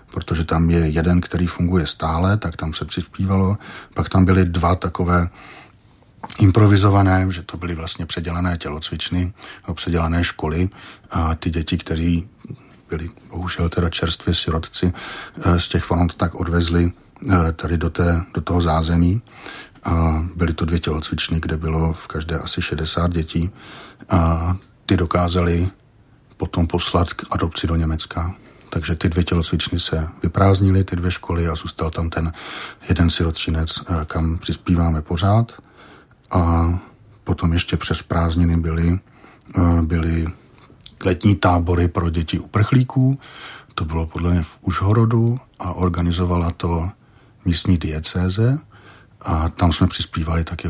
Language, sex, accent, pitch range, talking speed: Czech, male, native, 85-95 Hz, 130 wpm